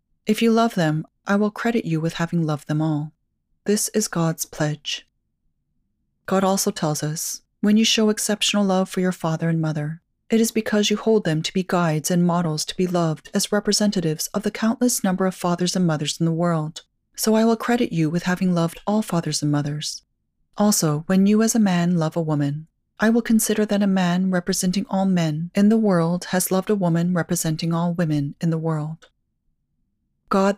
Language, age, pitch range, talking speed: English, 30-49, 160-210 Hz, 200 wpm